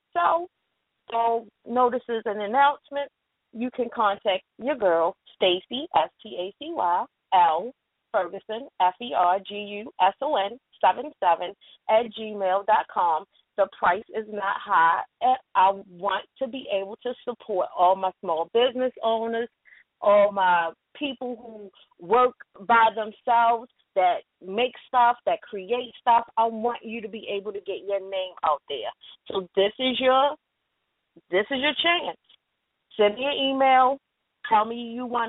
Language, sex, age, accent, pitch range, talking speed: English, female, 30-49, American, 205-260 Hz, 130 wpm